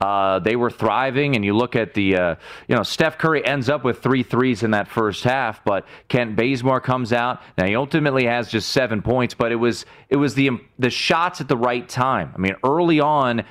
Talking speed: 225 wpm